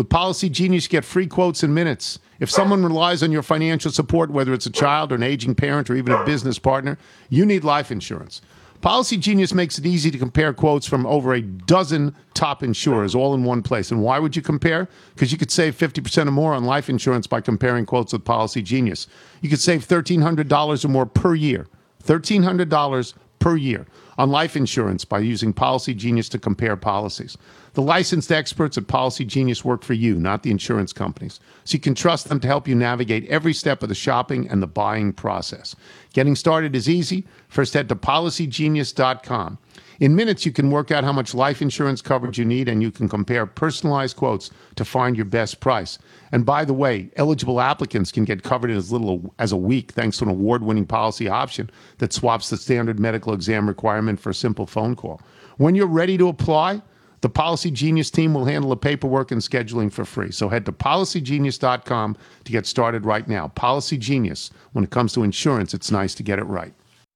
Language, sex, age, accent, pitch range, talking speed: English, male, 50-69, American, 115-155 Hz, 210 wpm